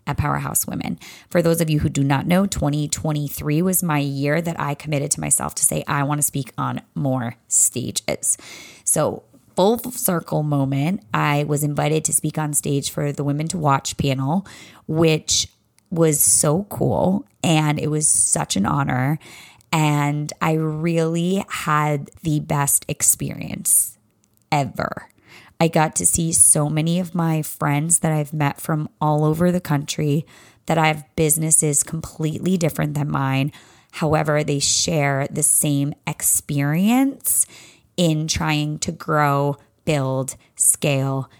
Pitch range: 145-170 Hz